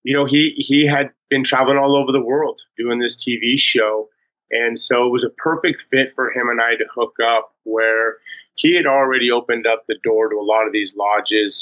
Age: 30-49